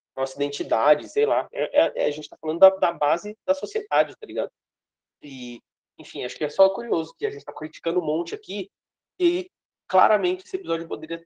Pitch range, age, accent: 145-210 Hz, 20-39, Brazilian